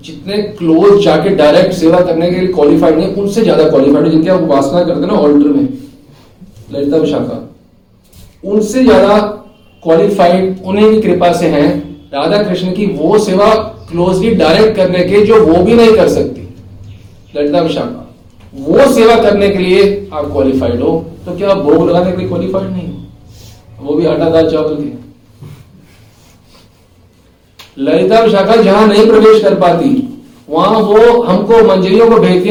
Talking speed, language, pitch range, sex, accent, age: 140 wpm, Hindi, 145-215 Hz, male, native, 40-59